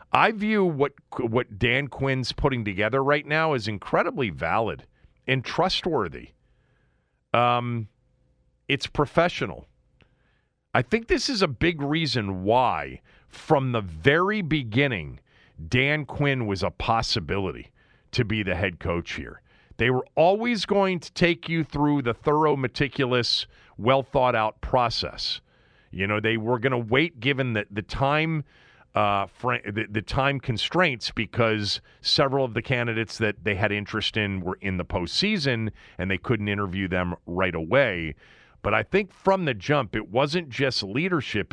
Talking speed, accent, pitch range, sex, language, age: 150 wpm, American, 105-145 Hz, male, English, 40-59